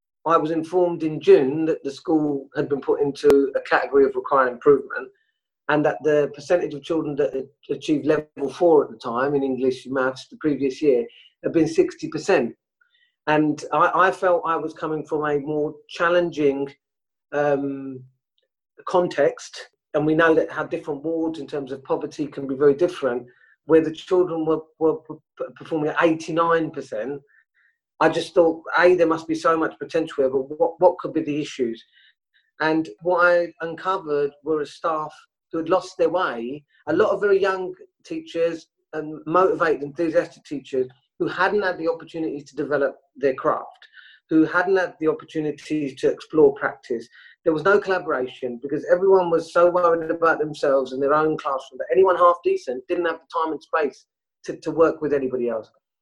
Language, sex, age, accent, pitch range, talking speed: English, male, 40-59, British, 145-180 Hz, 175 wpm